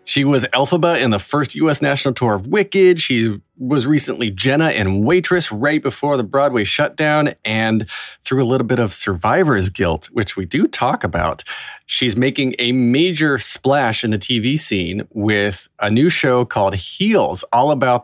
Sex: male